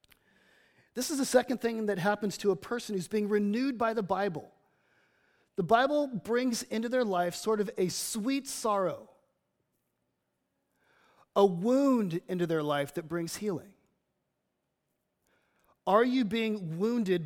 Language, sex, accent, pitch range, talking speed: English, male, American, 175-230 Hz, 135 wpm